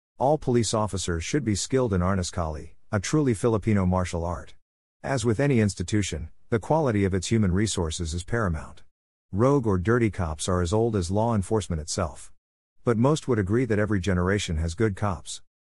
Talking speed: 175 wpm